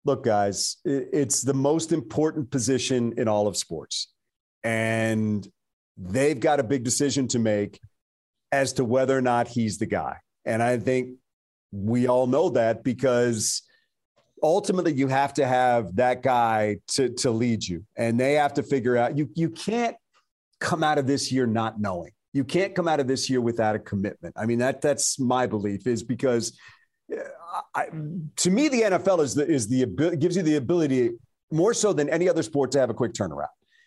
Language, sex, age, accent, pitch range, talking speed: English, male, 50-69, American, 120-150 Hz, 185 wpm